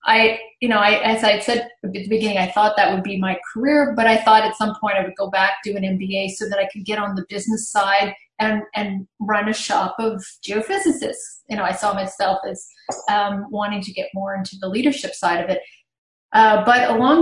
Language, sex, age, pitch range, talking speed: English, female, 30-49, 185-220 Hz, 230 wpm